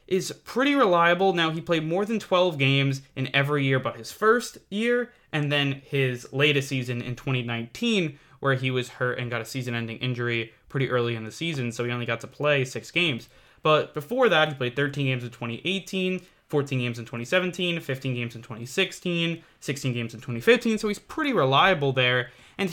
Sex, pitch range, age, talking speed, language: male, 130-185 Hz, 20-39, 195 wpm, English